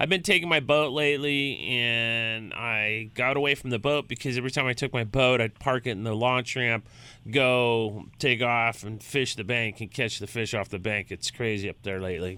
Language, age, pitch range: English, 30-49, 115-135 Hz